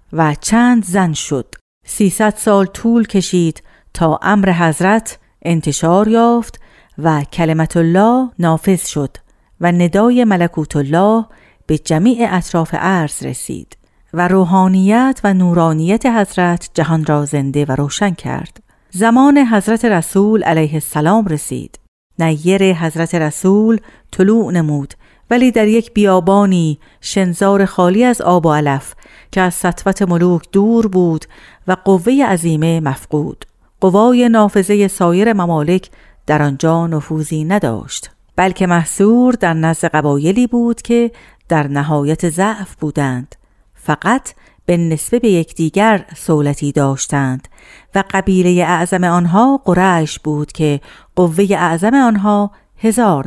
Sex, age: female, 50-69